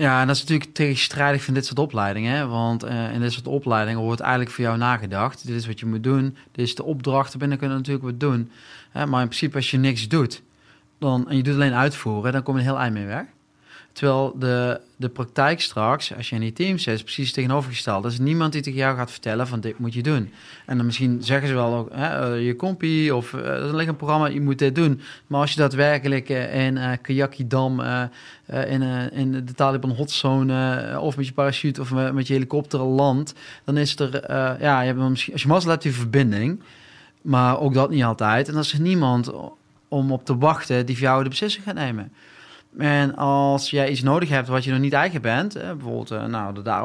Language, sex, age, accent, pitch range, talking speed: Dutch, male, 30-49, Dutch, 125-150 Hz, 225 wpm